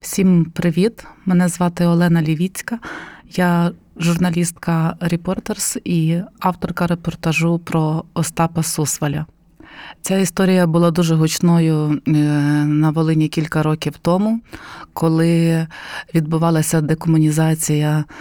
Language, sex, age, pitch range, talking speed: Ukrainian, female, 30-49, 155-175 Hz, 90 wpm